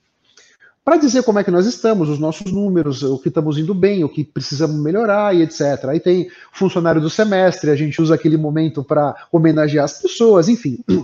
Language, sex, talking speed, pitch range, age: Portuguese, male, 195 wpm, 165-255 Hz, 40-59